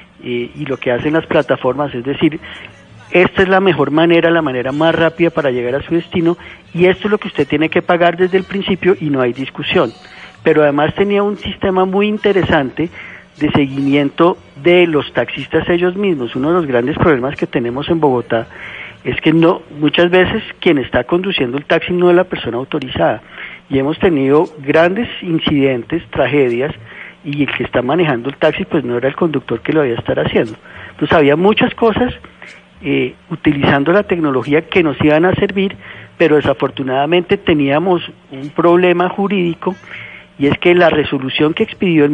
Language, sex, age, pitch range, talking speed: Spanish, male, 40-59, 140-185 Hz, 180 wpm